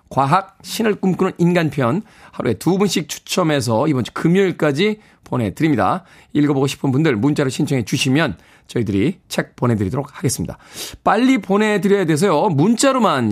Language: Korean